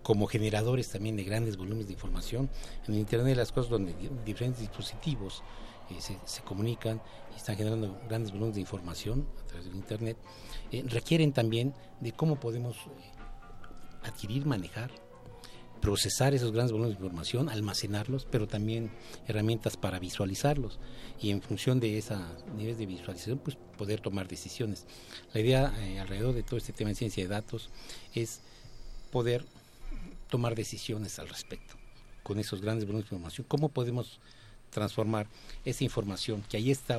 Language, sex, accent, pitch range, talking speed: Spanish, male, Mexican, 100-120 Hz, 155 wpm